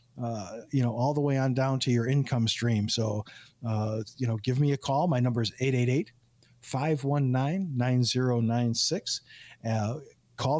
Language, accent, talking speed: English, American, 145 wpm